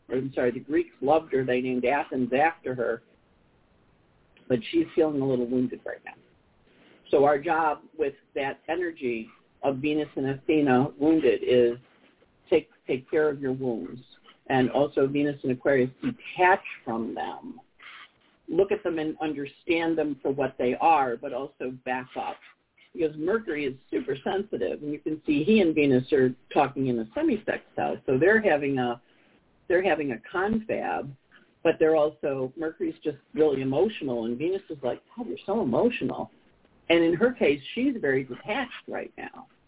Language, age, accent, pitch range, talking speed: English, 50-69, American, 130-170 Hz, 165 wpm